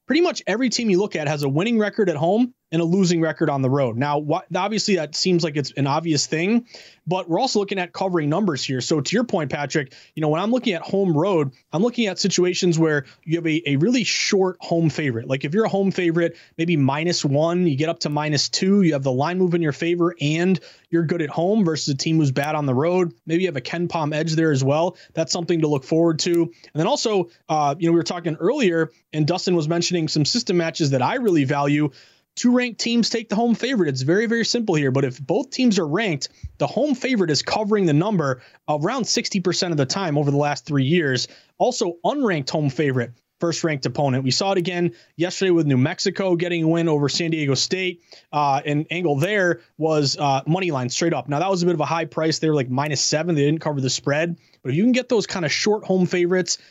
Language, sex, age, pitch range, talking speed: English, male, 20-39, 150-185 Hz, 245 wpm